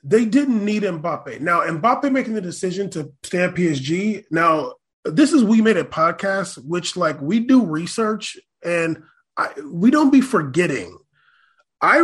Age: 20-39